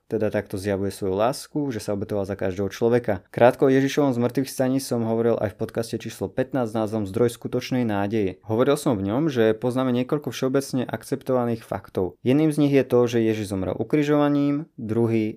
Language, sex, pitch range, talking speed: Slovak, male, 105-130 Hz, 185 wpm